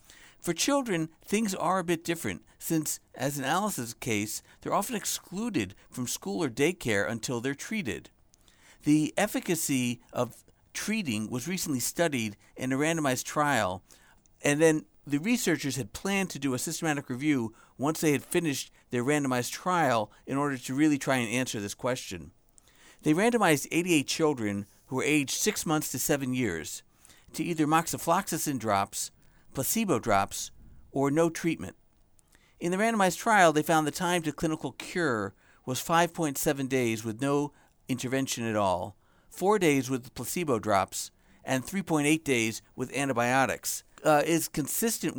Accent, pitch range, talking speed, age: American, 115-165 Hz, 150 wpm, 50-69